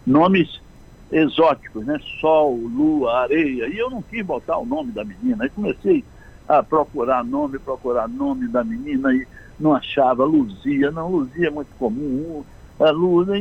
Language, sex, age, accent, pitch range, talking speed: Portuguese, male, 60-79, Brazilian, 135-190 Hz, 150 wpm